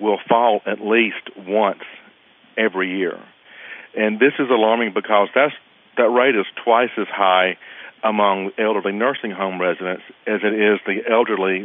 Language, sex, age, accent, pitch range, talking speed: English, male, 50-69, American, 95-115 Hz, 150 wpm